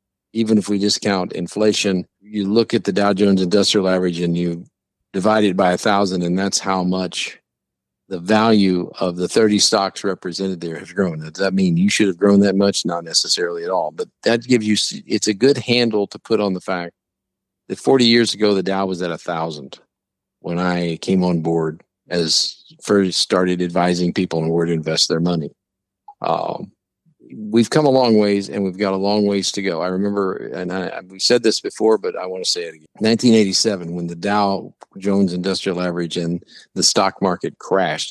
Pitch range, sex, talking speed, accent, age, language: 90-105 Hz, male, 200 wpm, American, 50-69, English